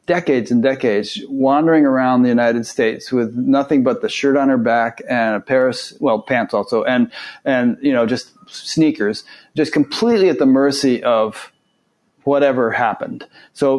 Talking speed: 165 wpm